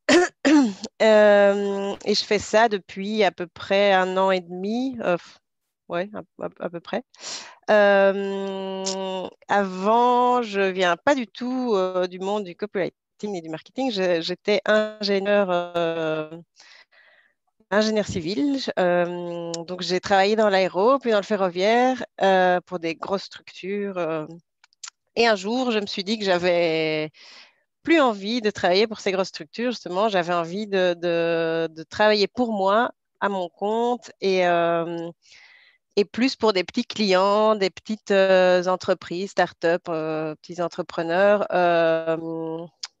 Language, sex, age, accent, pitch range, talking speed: French, female, 40-59, French, 175-215 Hz, 145 wpm